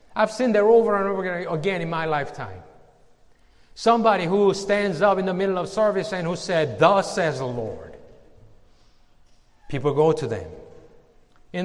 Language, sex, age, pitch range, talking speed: English, male, 60-79, 120-195 Hz, 165 wpm